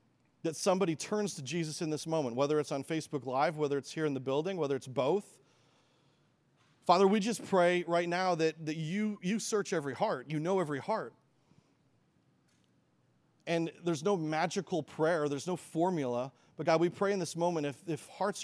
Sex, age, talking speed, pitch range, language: male, 40-59, 185 wpm, 140-175 Hz, English